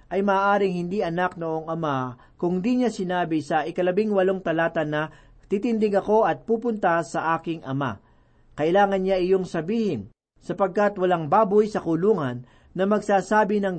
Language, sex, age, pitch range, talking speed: Filipino, male, 40-59, 150-195 Hz, 150 wpm